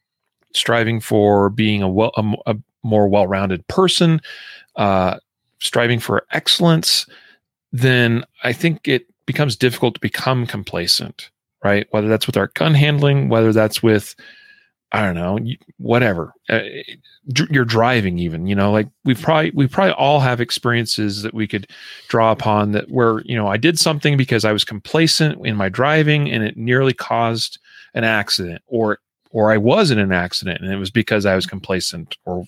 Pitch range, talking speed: 105-140 Hz, 170 wpm